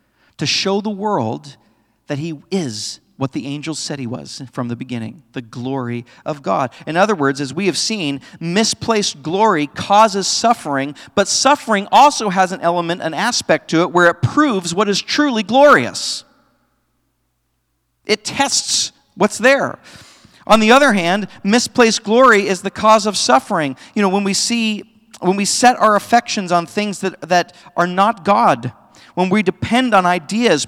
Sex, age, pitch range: male, 50-69, 150-225 Hz